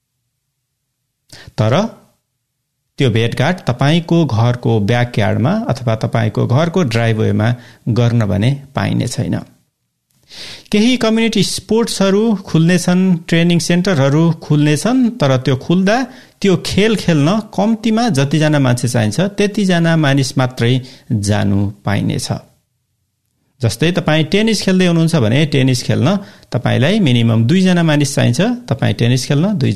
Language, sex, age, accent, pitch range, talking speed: English, male, 60-79, Indian, 120-175 Hz, 130 wpm